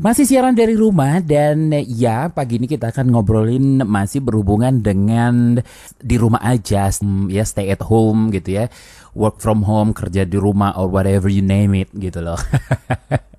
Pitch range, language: 105-145 Hz, Indonesian